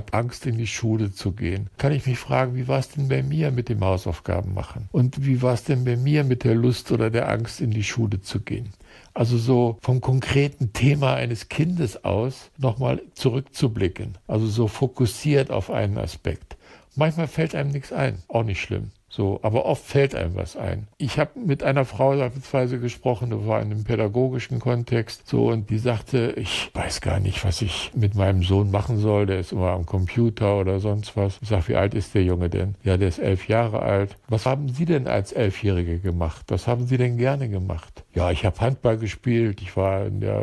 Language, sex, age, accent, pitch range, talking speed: German, male, 60-79, German, 95-130 Hz, 210 wpm